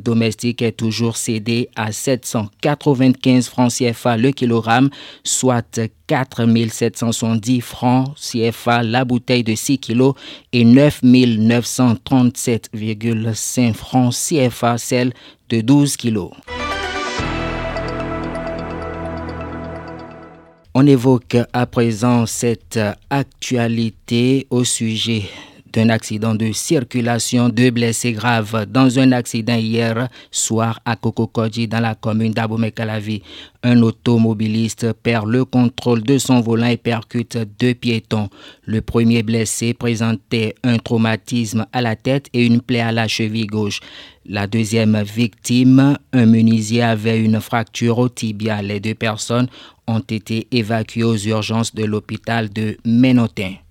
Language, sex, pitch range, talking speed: French, male, 110-125 Hz, 115 wpm